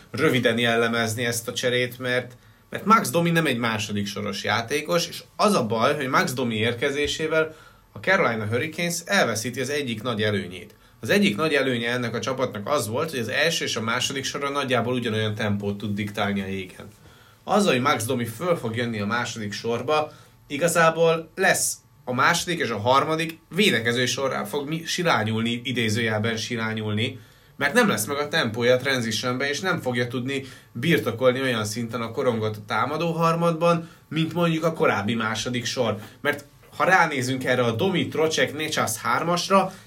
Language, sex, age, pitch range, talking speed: Hungarian, male, 20-39, 115-150 Hz, 165 wpm